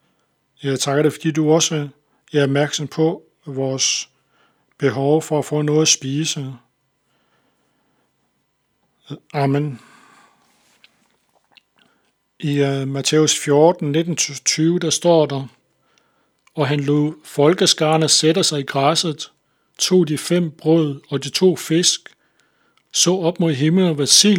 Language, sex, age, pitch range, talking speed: Danish, male, 60-79, 145-165 Hz, 115 wpm